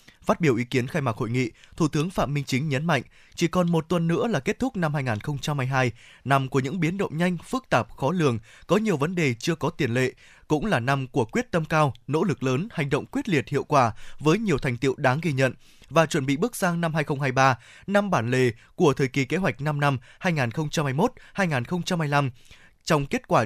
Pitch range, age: 130-185 Hz, 20-39